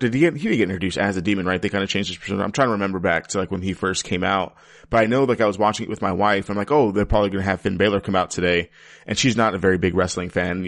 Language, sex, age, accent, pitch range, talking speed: English, male, 30-49, American, 90-105 Hz, 345 wpm